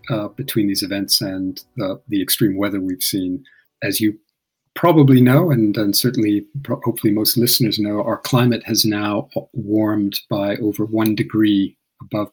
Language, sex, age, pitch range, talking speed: English, male, 40-59, 100-125 Hz, 155 wpm